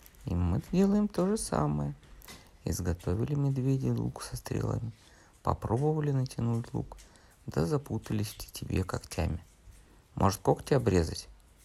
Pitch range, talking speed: 85-115 Hz, 115 wpm